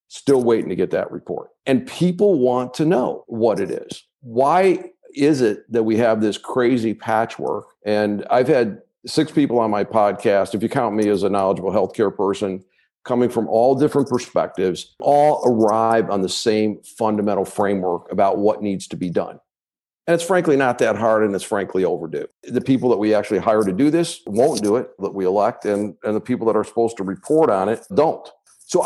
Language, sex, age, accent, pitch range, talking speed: English, male, 50-69, American, 105-140 Hz, 200 wpm